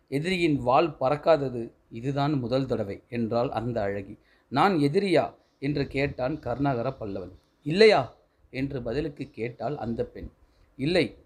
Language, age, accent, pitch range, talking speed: Tamil, 30-49, native, 115-155 Hz, 115 wpm